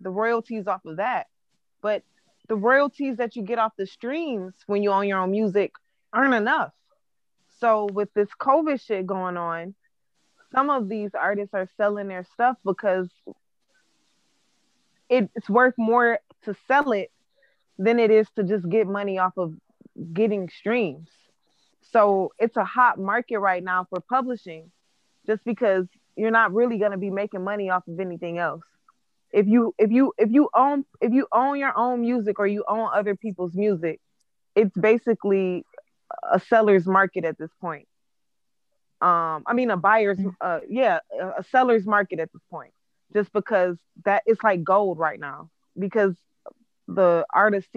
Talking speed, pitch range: 160 wpm, 185-230 Hz